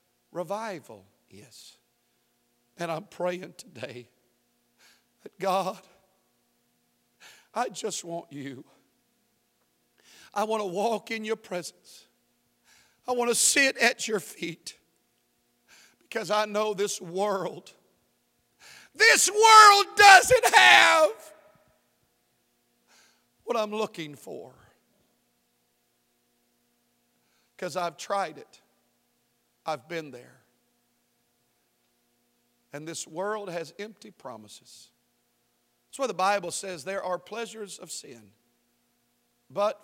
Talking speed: 95 wpm